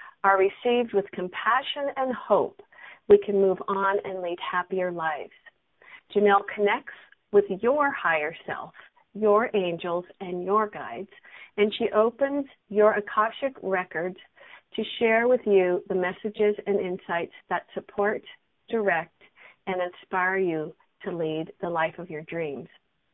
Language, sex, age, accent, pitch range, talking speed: English, female, 40-59, American, 190-230 Hz, 135 wpm